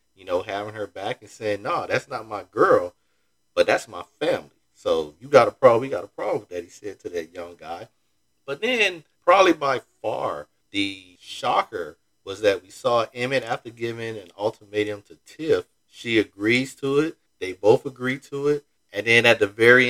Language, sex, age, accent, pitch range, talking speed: English, male, 40-59, American, 90-125 Hz, 200 wpm